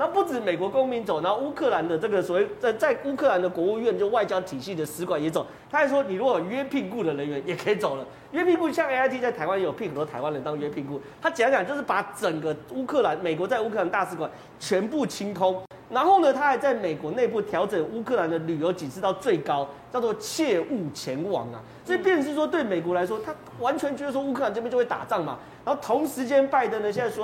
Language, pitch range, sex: Chinese, 170-275 Hz, male